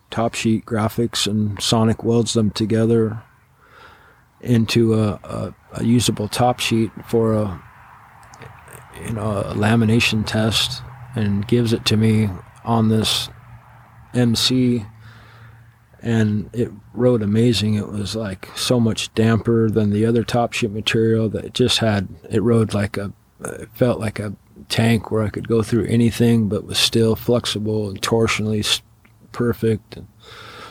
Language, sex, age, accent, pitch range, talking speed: English, male, 40-59, American, 105-115 Hz, 140 wpm